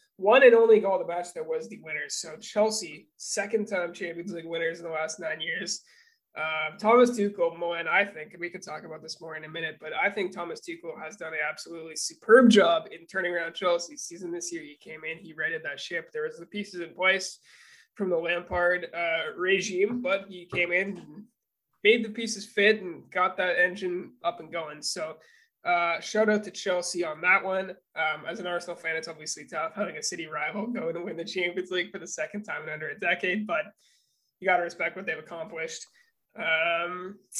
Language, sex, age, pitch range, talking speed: English, male, 20-39, 170-225 Hz, 215 wpm